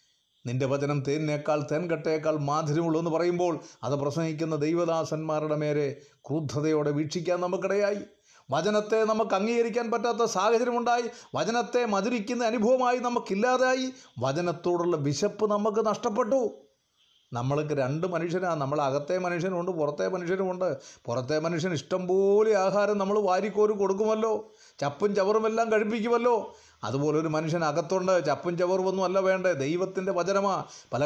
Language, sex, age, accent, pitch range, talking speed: Malayalam, male, 30-49, native, 165-220 Hz, 105 wpm